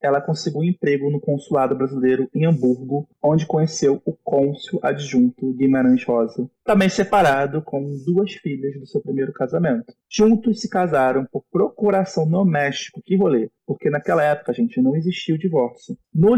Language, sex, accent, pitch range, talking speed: Portuguese, male, Brazilian, 135-180 Hz, 155 wpm